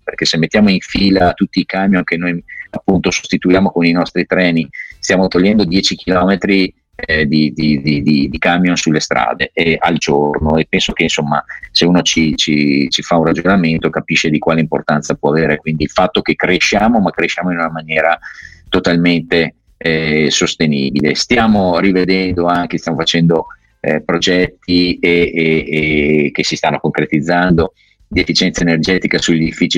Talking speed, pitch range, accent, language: 165 wpm, 80-95 Hz, native, Italian